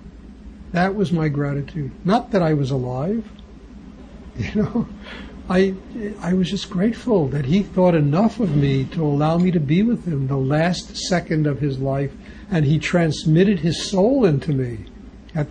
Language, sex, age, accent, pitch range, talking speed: English, male, 60-79, American, 140-200 Hz, 165 wpm